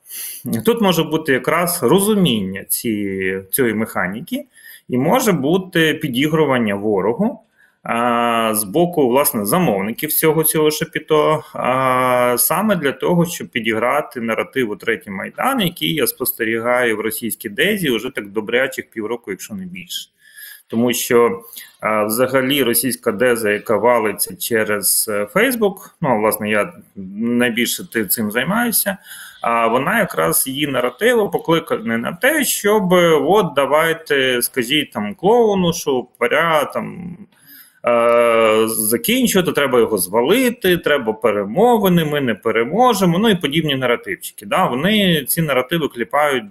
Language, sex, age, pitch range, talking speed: Ukrainian, male, 30-49, 115-190 Hz, 120 wpm